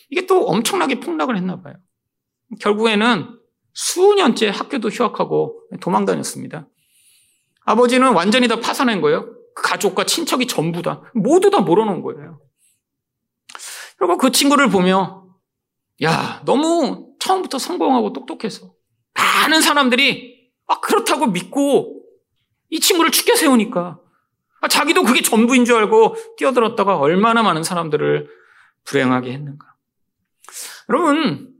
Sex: male